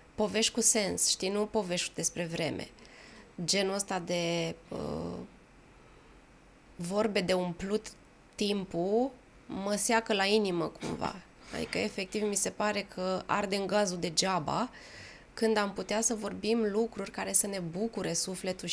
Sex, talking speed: female, 130 wpm